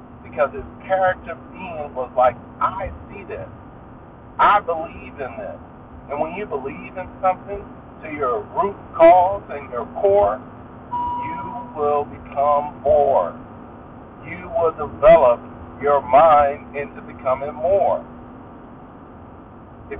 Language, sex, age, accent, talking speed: English, male, 50-69, American, 115 wpm